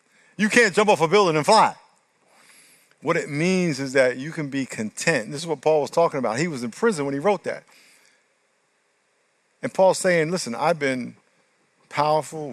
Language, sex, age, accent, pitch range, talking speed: English, male, 50-69, American, 130-165 Hz, 185 wpm